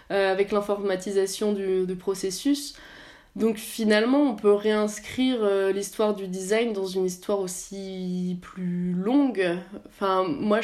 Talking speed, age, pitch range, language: 130 wpm, 20-39, 200-235 Hz, French